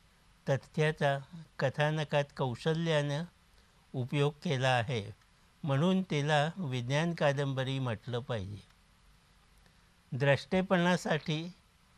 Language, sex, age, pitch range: Marathi, male, 60-79, 130-165 Hz